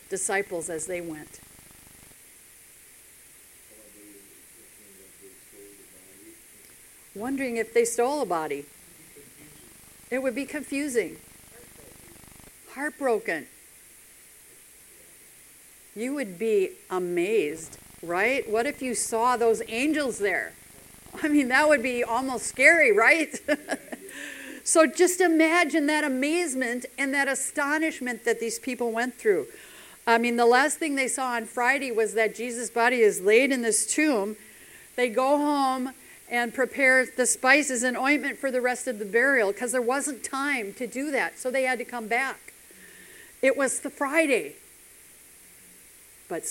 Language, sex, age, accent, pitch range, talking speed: English, female, 60-79, American, 225-285 Hz, 130 wpm